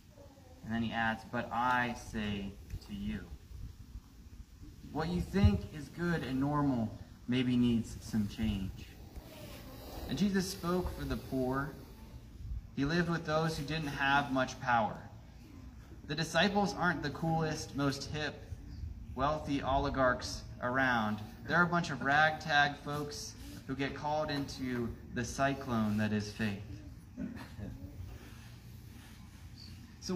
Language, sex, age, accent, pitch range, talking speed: English, male, 20-39, American, 100-145 Hz, 120 wpm